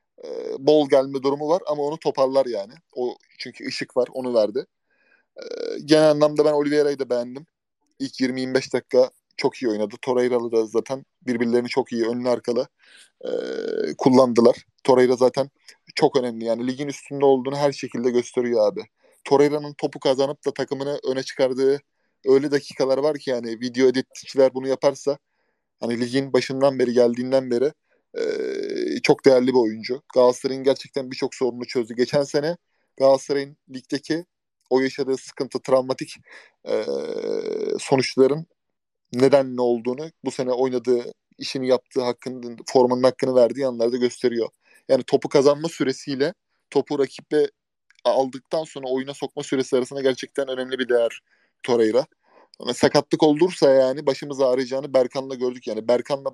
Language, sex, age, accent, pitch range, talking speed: Turkish, male, 30-49, native, 125-150 Hz, 140 wpm